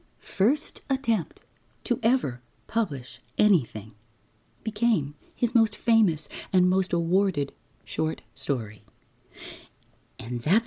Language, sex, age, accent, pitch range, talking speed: English, female, 50-69, American, 125-190 Hz, 95 wpm